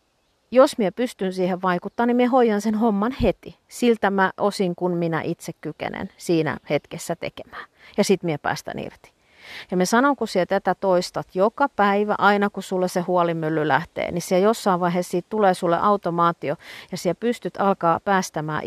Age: 40-59